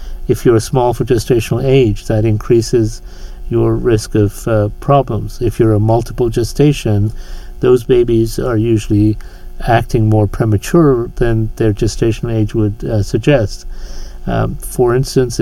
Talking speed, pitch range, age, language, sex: 135 wpm, 105-120 Hz, 50-69, English, male